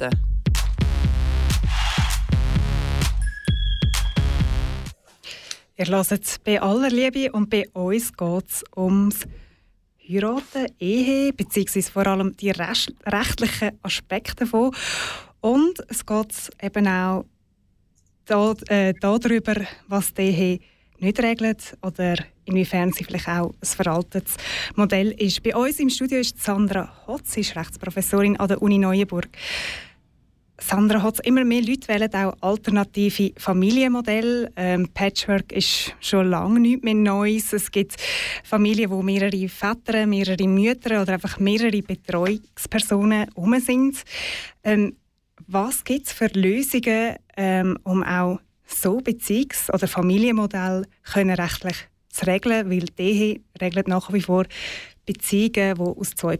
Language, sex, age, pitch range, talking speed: German, female, 20-39, 185-220 Hz, 115 wpm